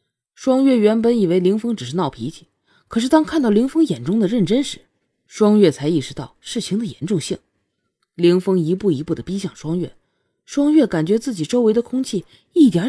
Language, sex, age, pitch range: Chinese, female, 30-49, 140-215 Hz